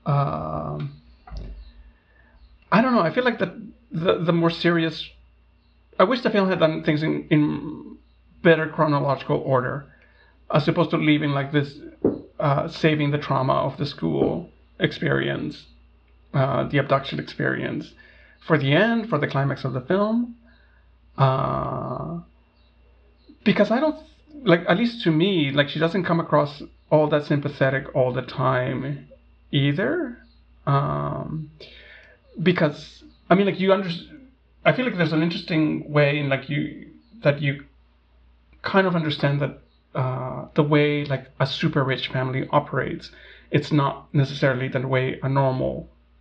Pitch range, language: 125-165 Hz, English